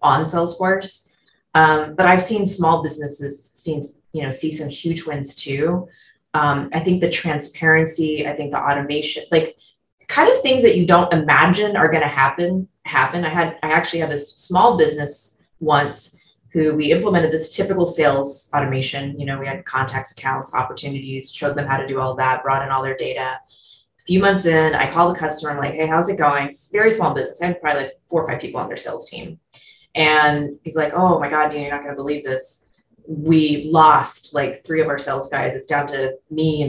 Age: 20-39